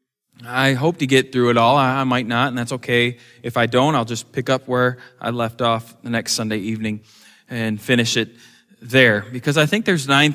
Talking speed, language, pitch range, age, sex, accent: 215 wpm, English, 125-155 Hz, 20-39, male, American